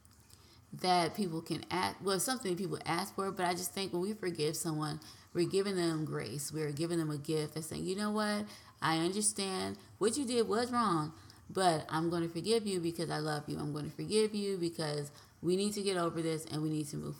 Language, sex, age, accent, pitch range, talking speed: English, female, 20-39, American, 150-190 Hz, 225 wpm